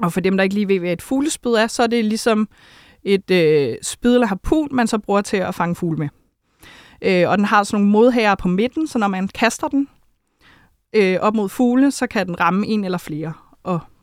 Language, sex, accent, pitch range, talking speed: Danish, female, native, 180-230 Hz, 230 wpm